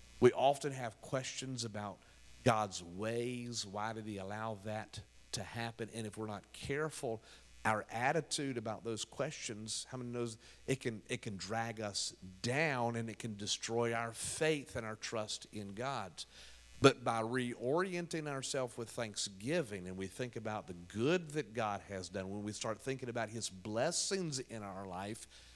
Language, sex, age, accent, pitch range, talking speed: English, male, 50-69, American, 105-155 Hz, 165 wpm